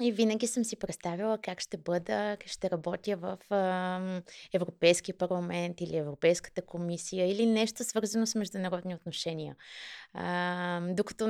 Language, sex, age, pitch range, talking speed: Bulgarian, female, 20-39, 175-215 Hz, 125 wpm